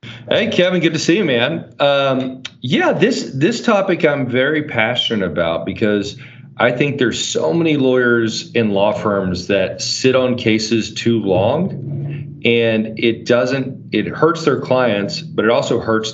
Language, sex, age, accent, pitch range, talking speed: English, male, 40-59, American, 95-120 Hz, 160 wpm